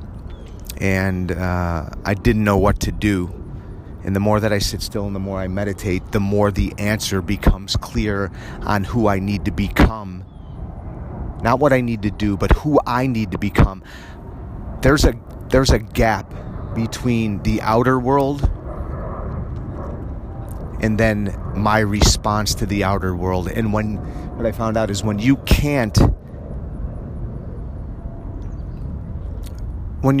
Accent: American